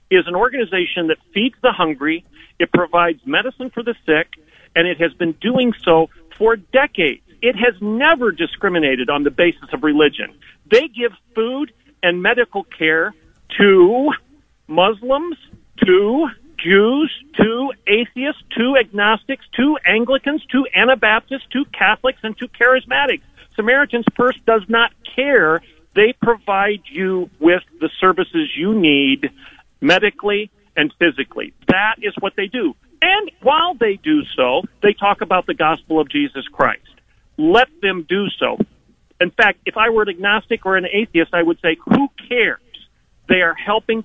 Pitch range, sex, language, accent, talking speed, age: 180-255 Hz, male, English, American, 150 wpm, 50-69